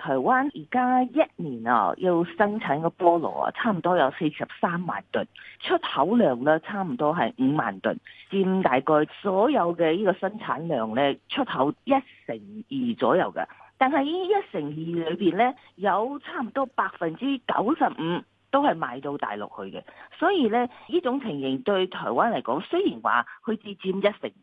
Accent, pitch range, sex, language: native, 165-255 Hz, female, Chinese